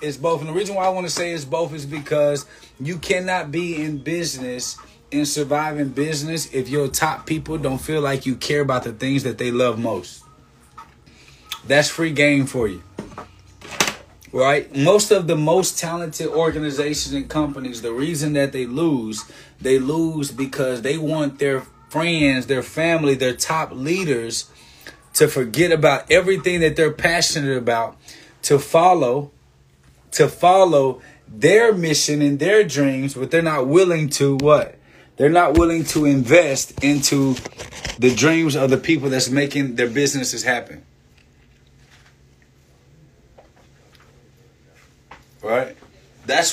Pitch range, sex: 135-165 Hz, male